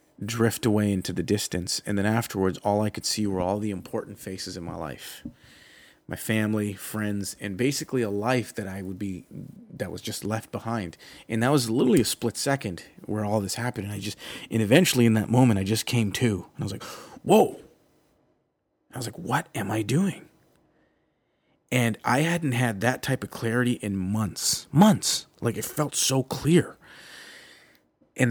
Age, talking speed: 30-49, 185 wpm